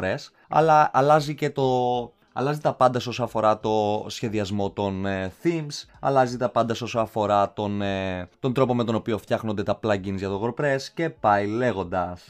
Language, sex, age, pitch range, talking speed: Greek, male, 20-39, 100-130 Hz, 170 wpm